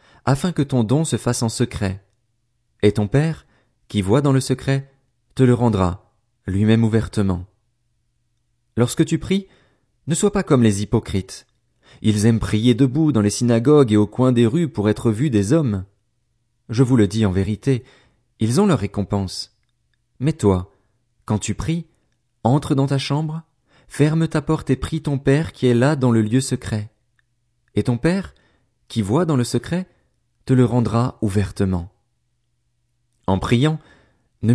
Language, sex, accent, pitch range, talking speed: French, male, French, 110-135 Hz, 165 wpm